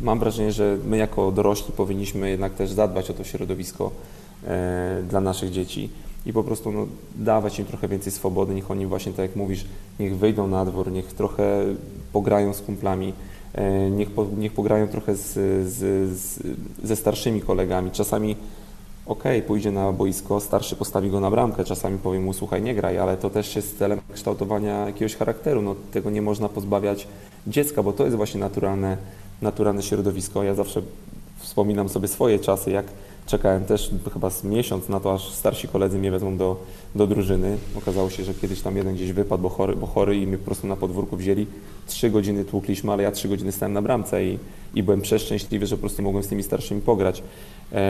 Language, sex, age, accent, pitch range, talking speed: Polish, male, 20-39, native, 95-105 Hz, 180 wpm